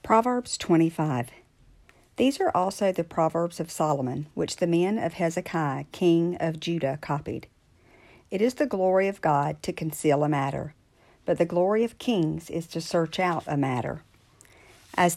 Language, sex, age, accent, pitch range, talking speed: English, female, 50-69, American, 150-185 Hz, 160 wpm